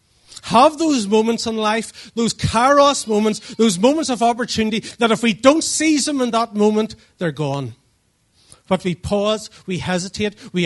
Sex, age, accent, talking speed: male, 40-59, Irish, 165 wpm